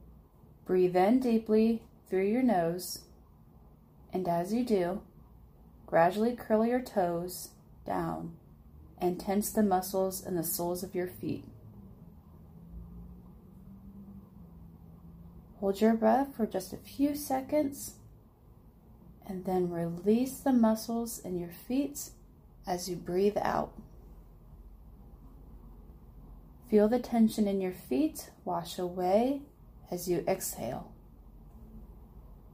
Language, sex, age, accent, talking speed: English, female, 30-49, American, 105 wpm